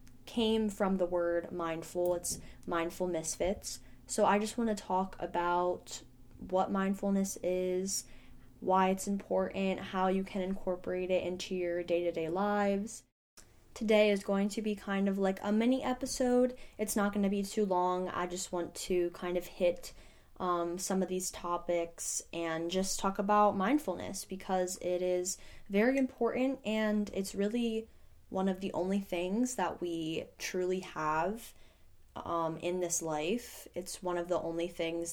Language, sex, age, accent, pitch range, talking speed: English, female, 10-29, American, 175-200 Hz, 155 wpm